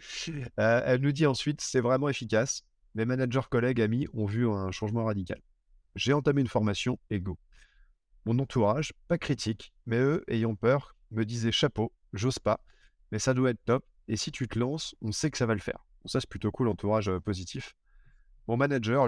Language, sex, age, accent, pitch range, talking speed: French, male, 30-49, French, 105-130 Hz, 195 wpm